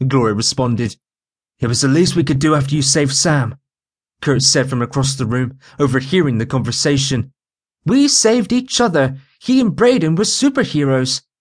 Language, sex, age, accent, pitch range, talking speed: English, male, 30-49, British, 130-160 Hz, 165 wpm